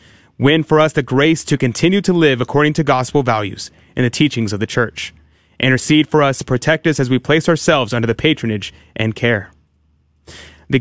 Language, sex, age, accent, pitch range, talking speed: English, male, 30-49, American, 110-175 Hz, 195 wpm